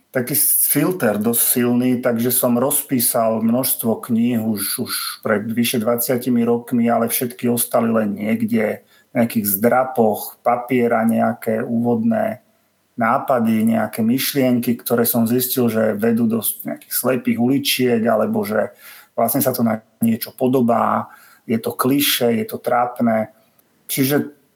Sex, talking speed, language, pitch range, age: male, 125 wpm, Slovak, 115-140 Hz, 40-59